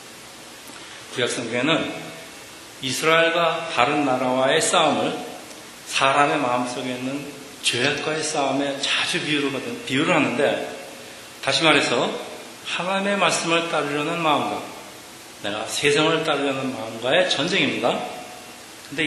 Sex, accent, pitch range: male, native, 130-165 Hz